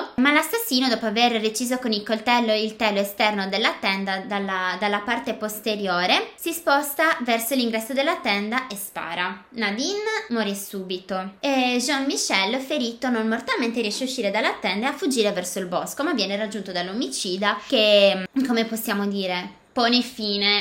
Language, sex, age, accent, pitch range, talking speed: Italian, female, 20-39, native, 205-255 Hz, 155 wpm